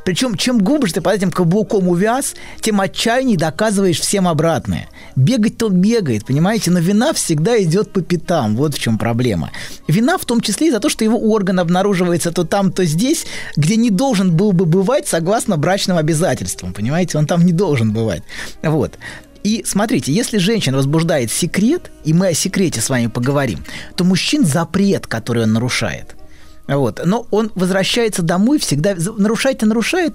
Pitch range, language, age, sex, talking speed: 145-210 Hz, Russian, 20-39, male, 170 wpm